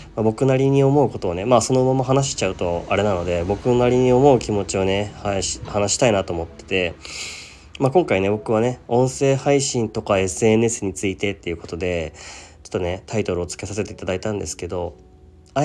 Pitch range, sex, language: 80-110 Hz, male, Japanese